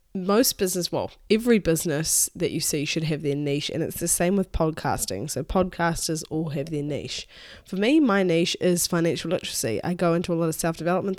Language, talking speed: English, 205 wpm